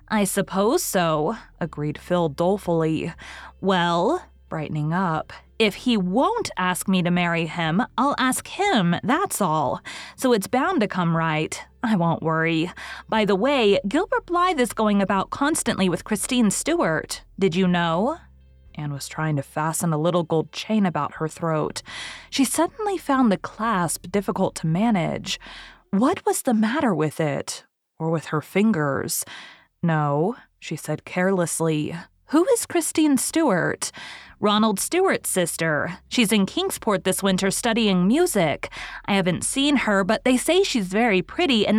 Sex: female